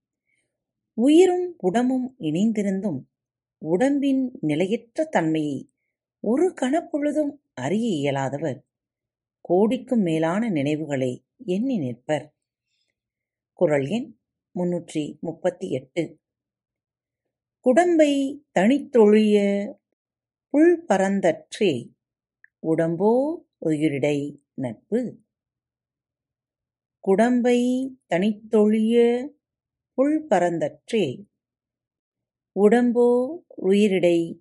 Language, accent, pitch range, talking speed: Tamil, native, 150-240 Hz, 50 wpm